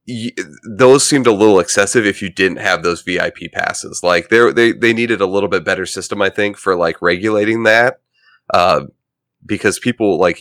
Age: 30-49